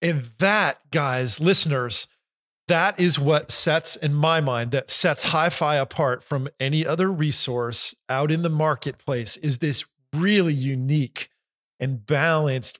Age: 50-69